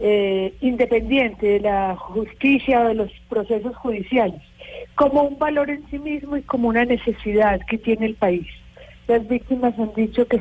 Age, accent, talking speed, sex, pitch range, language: 40-59, Colombian, 165 wpm, female, 205-245 Hz, Spanish